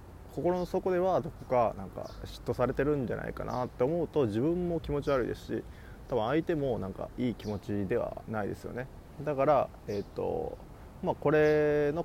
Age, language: 20-39, Japanese